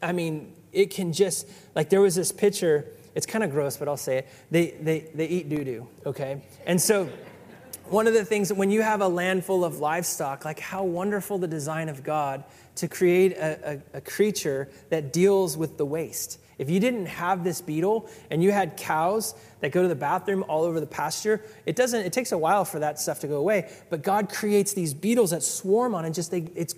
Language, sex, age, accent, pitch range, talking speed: English, male, 30-49, American, 160-205 Hz, 225 wpm